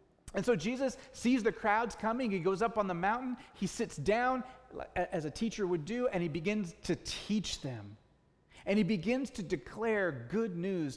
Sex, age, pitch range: male, 30-49, 175-225 Hz